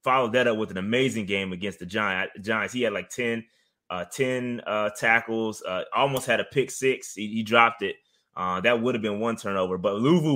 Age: 20-39